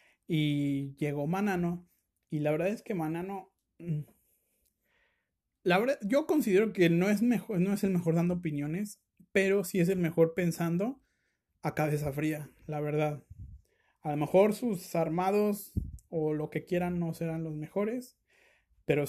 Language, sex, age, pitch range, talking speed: Spanish, male, 30-49, 155-185 Hz, 155 wpm